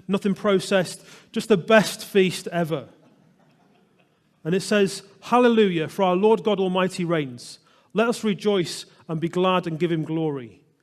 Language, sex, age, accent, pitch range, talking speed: English, male, 30-49, British, 160-195 Hz, 150 wpm